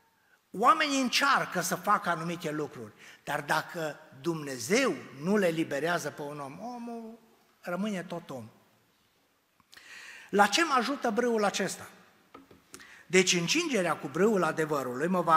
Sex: male